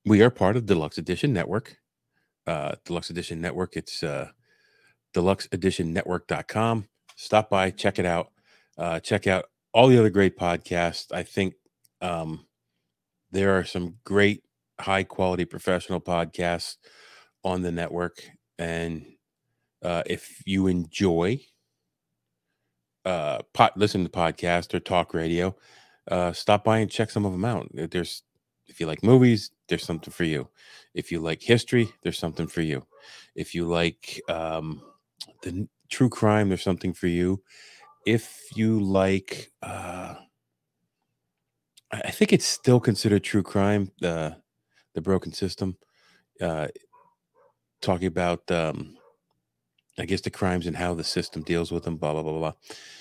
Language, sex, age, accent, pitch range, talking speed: English, male, 40-59, American, 85-105 Hz, 145 wpm